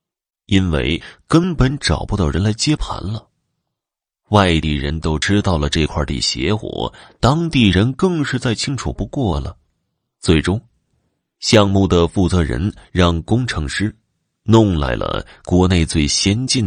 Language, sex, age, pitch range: Chinese, male, 30-49, 80-115 Hz